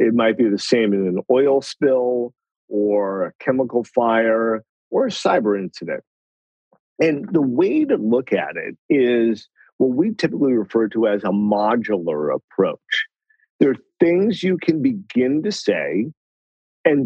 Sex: male